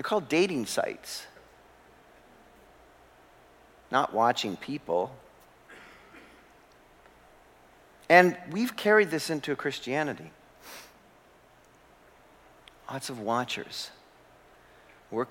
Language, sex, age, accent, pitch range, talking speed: English, male, 50-69, American, 145-205 Hz, 65 wpm